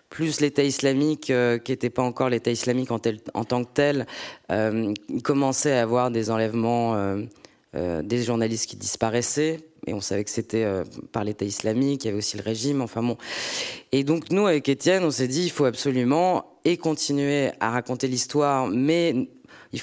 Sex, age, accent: female, 20-39, French